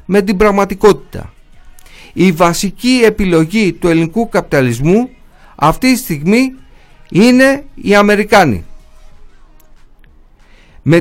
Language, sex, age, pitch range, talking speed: Greek, male, 50-69, 155-210 Hz, 85 wpm